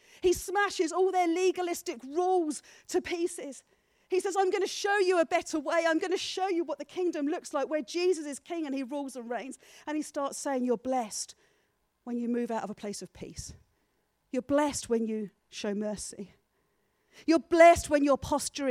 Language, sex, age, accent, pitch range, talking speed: English, female, 40-59, British, 225-295 Hz, 200 wpm